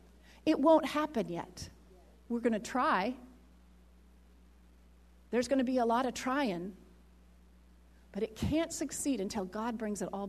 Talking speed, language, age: 145 wpm, English, 40-59